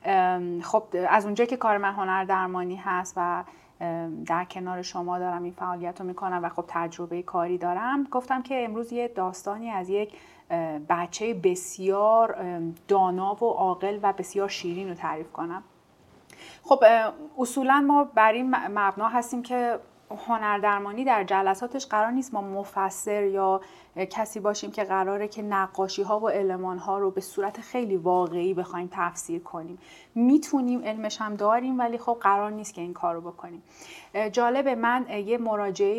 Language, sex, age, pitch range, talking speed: Persian, female, 30-49, 185-225 Hz, 150 wpm